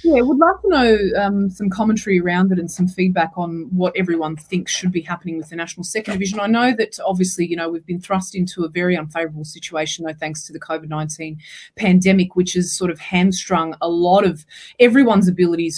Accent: Australian